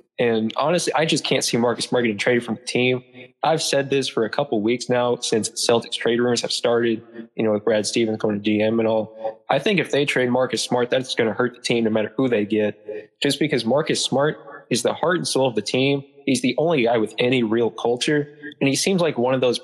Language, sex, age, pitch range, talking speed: English, male, 20-39, 110-140 Hz, 255 wpm